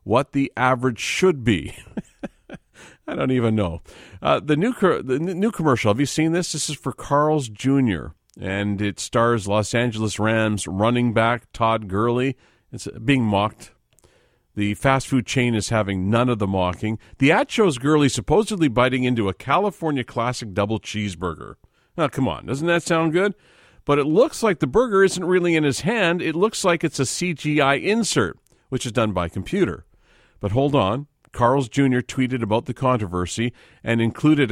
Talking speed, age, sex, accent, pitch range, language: 175 wpm, 40-59, male, American, 105-140 Hz, English